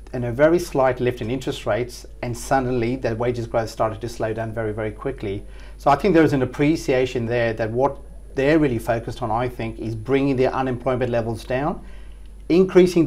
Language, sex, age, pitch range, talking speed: English, male, 40-59, 120-140 Hz, 195 wpm